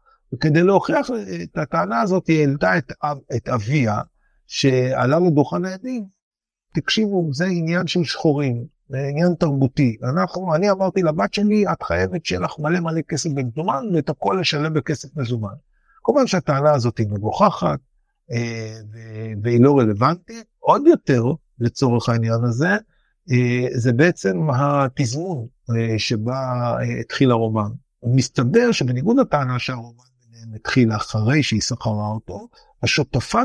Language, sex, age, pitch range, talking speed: Hebrew, male, 60-79, 125-170 Hz, 120 wpm